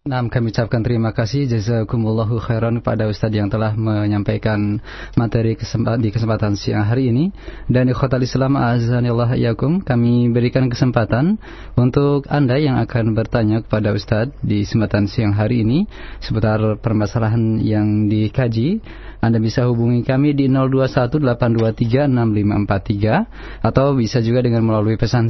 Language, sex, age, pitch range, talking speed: Malay, male, 20-39, 110-130 Hz, 130 wpm